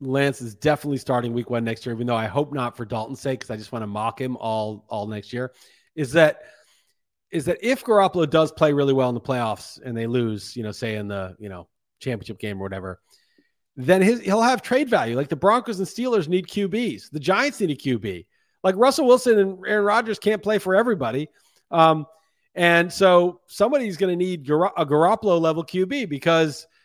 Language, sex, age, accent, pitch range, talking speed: English, male, 40-59, American, 140-190 Hz, 210 wpm